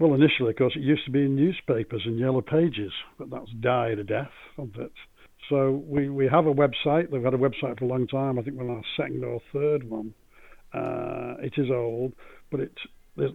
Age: 60-79